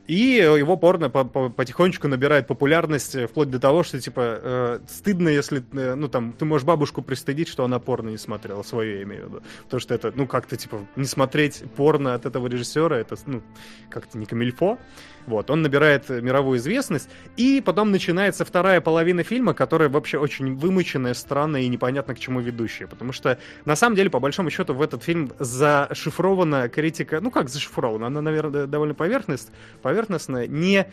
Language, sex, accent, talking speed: Russian, male, native, 175 wpm